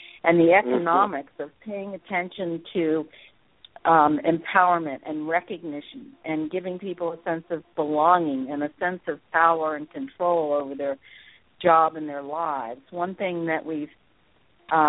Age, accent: 50-69, American